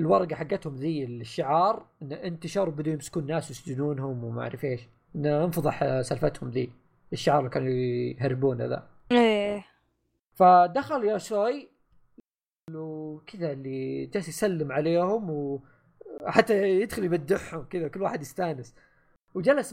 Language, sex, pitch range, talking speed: Arabic, male, 150-225 Hz, 115 wpm